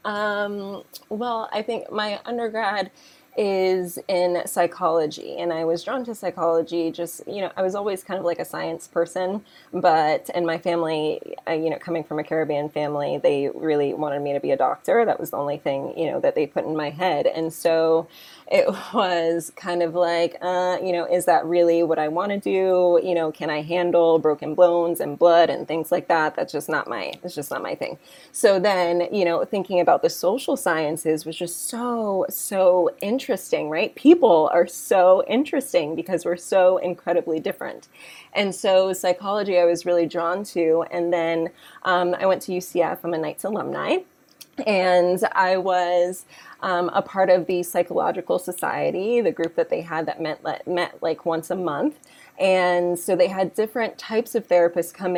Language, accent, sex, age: English, American, female, 20-39